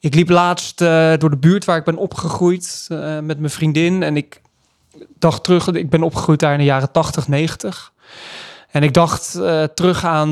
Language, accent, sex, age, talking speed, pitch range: Dutch, Dutch, male, 20-39, 200 wpm, 145-175 Hz